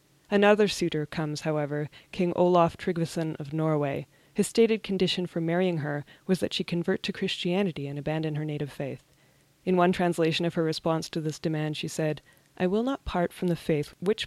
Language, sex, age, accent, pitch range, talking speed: English, female, 20-39, American, 150-180 Hz, 190 wpm